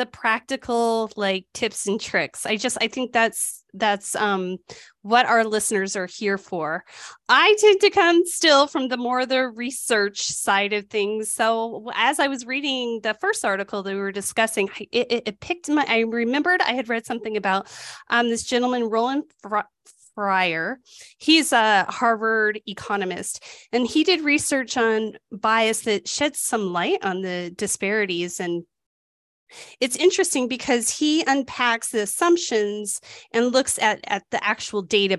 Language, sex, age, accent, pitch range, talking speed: English, female, 20-39, American, 205-265 Hz, 160 wpm